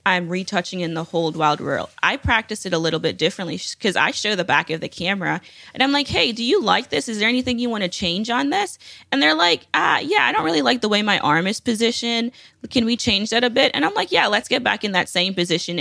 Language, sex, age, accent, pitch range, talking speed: English, female, 20-39, American, 165-215 Hz, 270 wpm